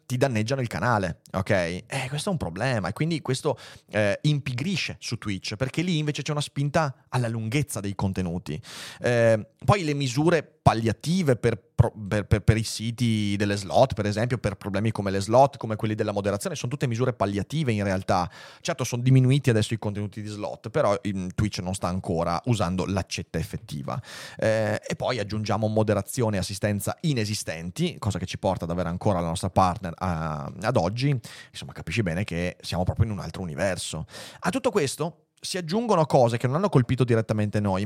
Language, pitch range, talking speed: Italian, 105-140 Hz, 185 wpm